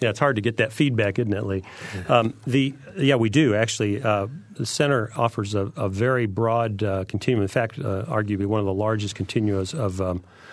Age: 40-59